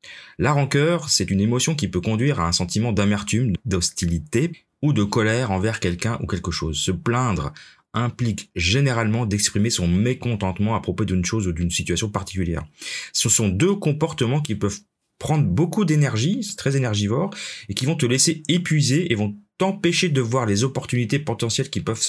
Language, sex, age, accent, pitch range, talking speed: French, male, 30-49, French, 95-135 Hz, 175 wpm